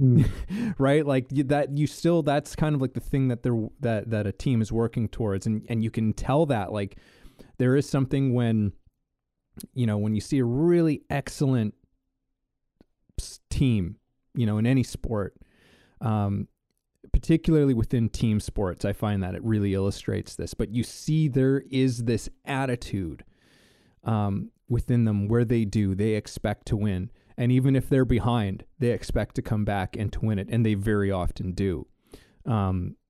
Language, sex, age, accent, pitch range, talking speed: English, male, 20-39, American, 105-130 Hz, 170 wpm